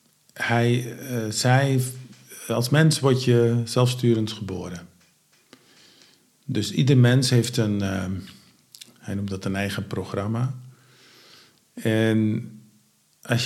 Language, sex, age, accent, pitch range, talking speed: English, male, 50-69, Dutch, 105-125 Hz, 105 wpm